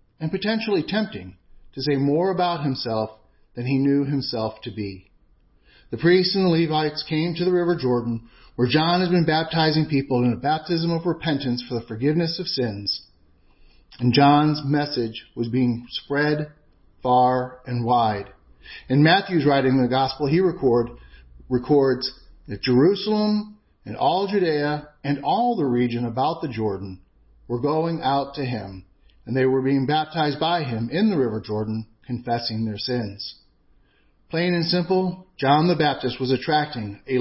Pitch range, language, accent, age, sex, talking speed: 120-165 Hz, English, American, 40-59, male, 160 wpm